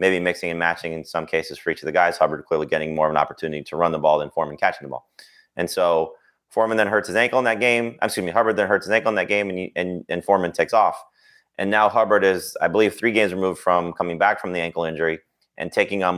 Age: 30-49